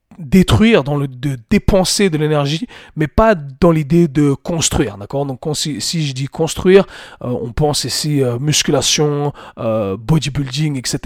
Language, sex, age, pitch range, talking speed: French, male, 40-59, 140-180 Hz, 155 wpm